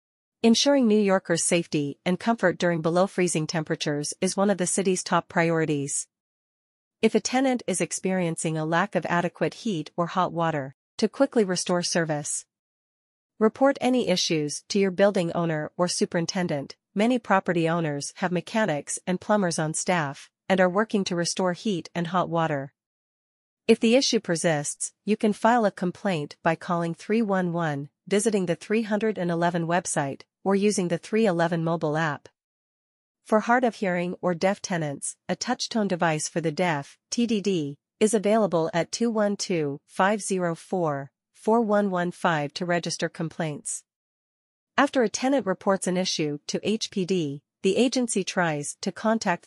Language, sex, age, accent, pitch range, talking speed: English, female, 40-59, American, 165-205 Hz, 140 wpm